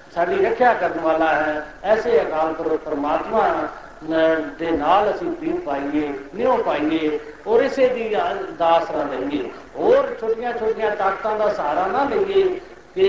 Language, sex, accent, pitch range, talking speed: Hindi, male, native, 175-250 Hz, 110 wpm